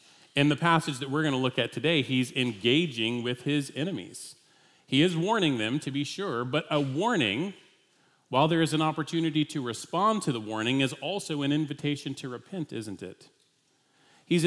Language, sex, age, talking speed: English, male, 40-59, 185 wpm